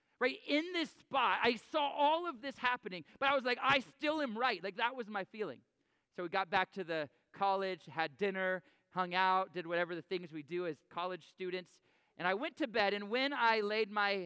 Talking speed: 225 wpm